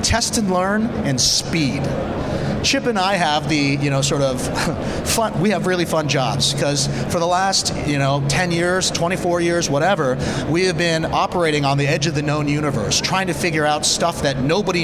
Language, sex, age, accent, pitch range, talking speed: English, male, 30-49, American, 140-175 Hz, 200 wpm